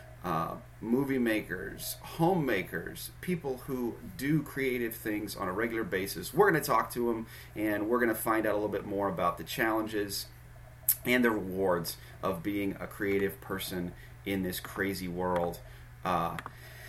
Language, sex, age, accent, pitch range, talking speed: English, male, 30-49, American, 95-125 Hz, 160 wpm